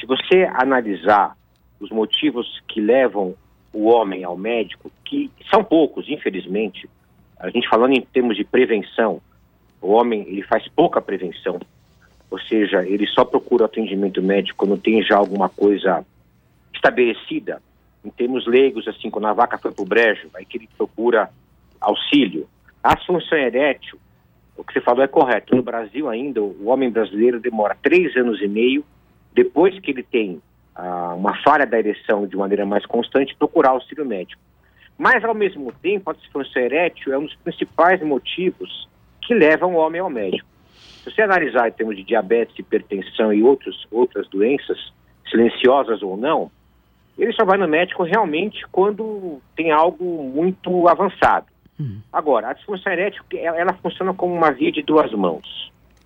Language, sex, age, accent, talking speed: Portuguese, male, 50-69, Brazilian, 160 wpm